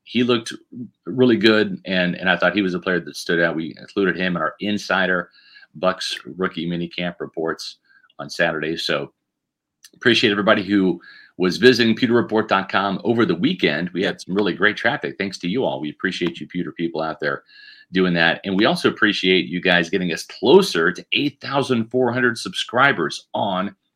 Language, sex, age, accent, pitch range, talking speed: English, male, 40-59, American, 90-115 Hz, 175 wpm